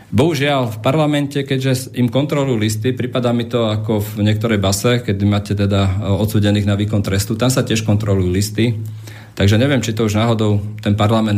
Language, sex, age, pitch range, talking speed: Slovak, male, 40-59, 105-115 Hz, 180 wpm